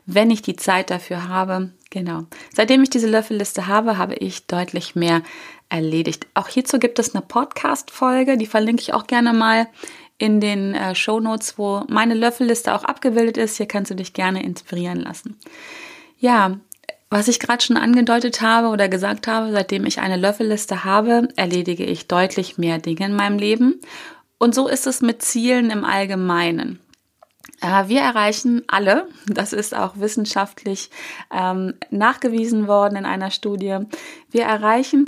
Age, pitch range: 30-49, 200-260 Hz